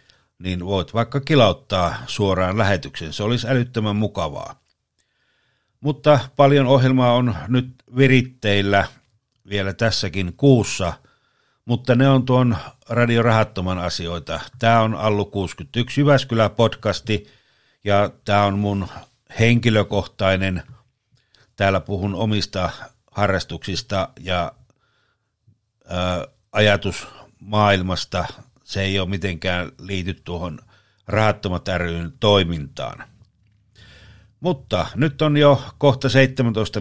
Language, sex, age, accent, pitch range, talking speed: Finnish, male, 60-79, native, 100-125 Hz, 95 wpm